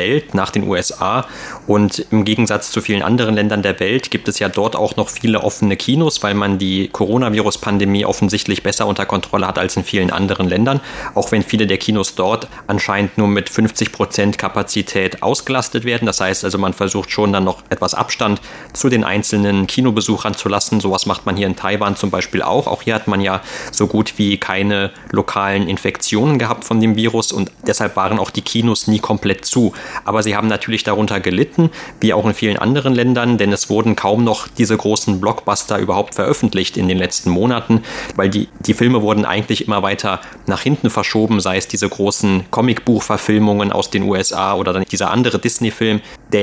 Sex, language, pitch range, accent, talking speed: male, German, 100-110 Hz, German, 195 wpm